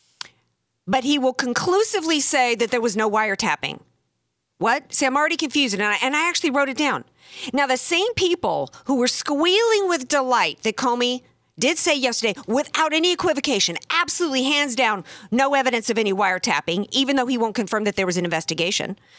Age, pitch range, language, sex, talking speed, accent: 50-69, 190-270 Hz, English, female, 180 wpm, American